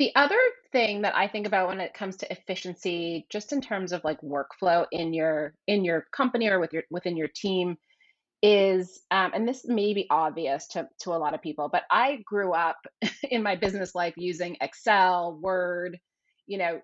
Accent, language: American, English